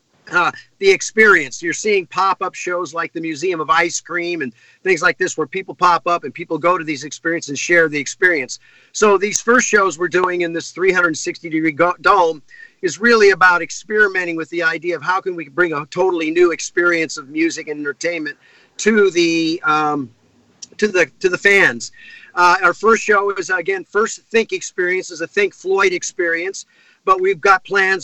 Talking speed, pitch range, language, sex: 185 wpm, 170-205 Hz, English, male